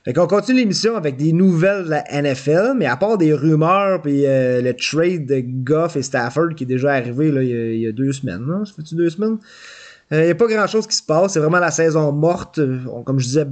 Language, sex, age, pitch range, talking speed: French, male, 30-49, 135-175 Hz, 255 wpm